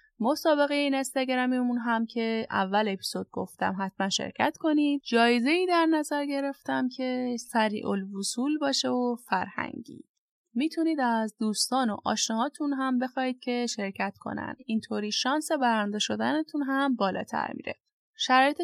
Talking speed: 130 wpm